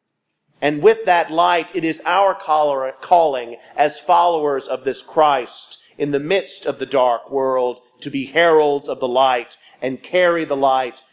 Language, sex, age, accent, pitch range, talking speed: English, male, 40-59, American, 145-190 Hz, 160 wpm